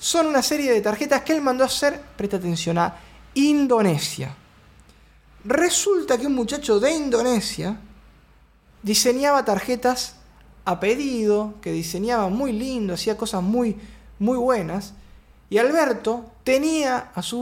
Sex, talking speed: male, 130 wpm